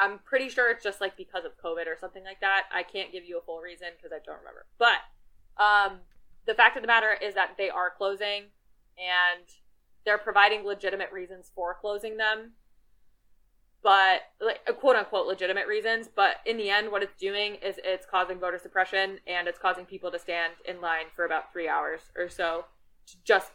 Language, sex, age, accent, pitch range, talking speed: German, female, 20-39, American, 175-210 Hz, 195 wpm